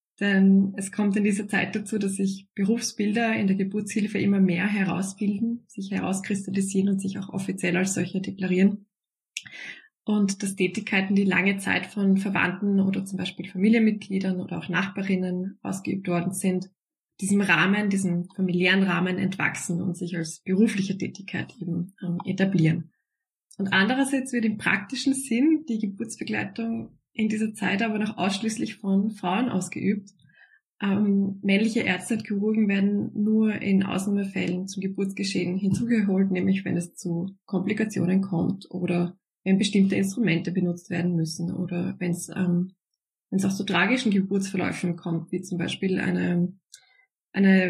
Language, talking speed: German, 140 wpm